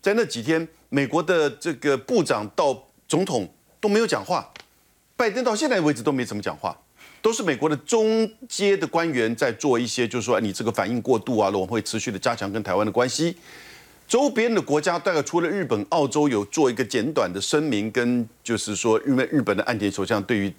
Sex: male